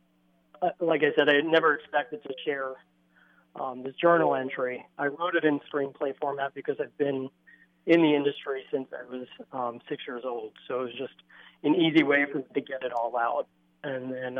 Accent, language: American, English